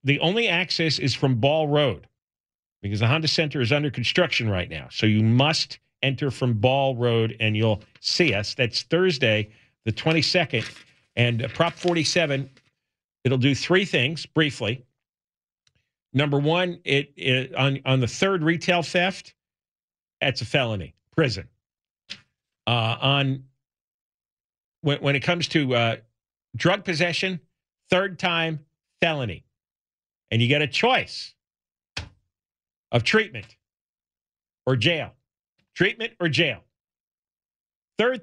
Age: 50-69